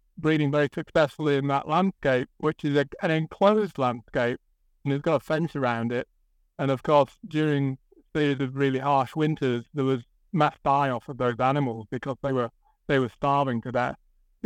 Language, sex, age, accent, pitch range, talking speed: English, male, 50-69, British, 135-165 Hz, 185 wpm